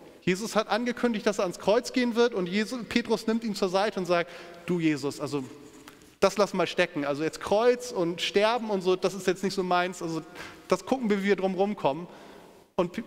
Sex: male